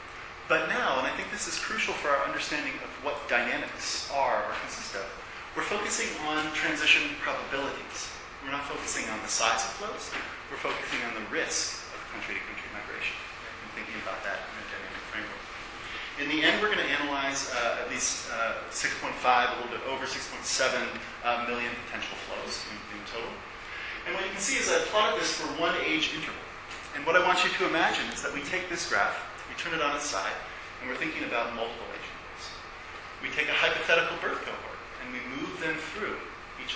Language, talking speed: English, 195 wpm